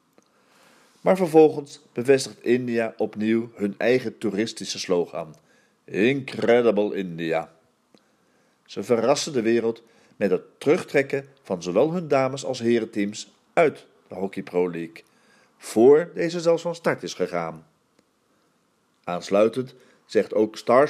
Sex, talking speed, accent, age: male, 115 wpm, Dutch, 40-59